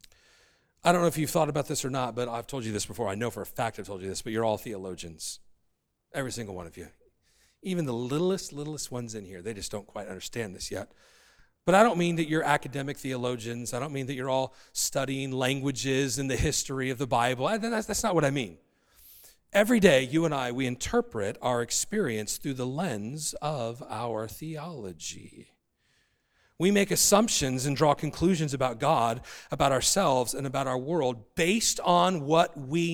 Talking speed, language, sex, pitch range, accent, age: 195 wpm, English, male, 125-205 Hz, American, 40-59